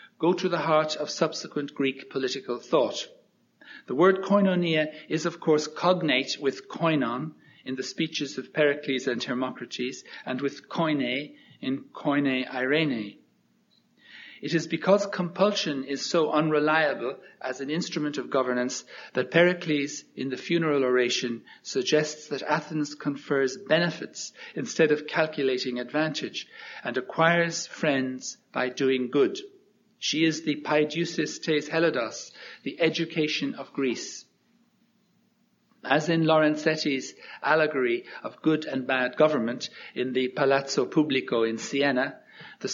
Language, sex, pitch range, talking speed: English, male, 135-170 Hz, 125 wpm